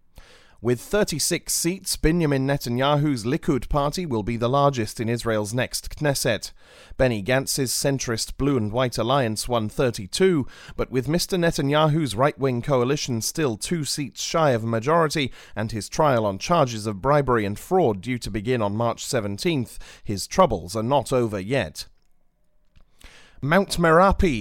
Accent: British